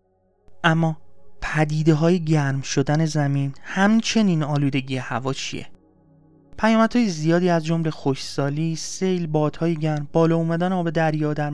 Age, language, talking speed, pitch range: 30-49, Persian, 115 wpm, 130-165 Hz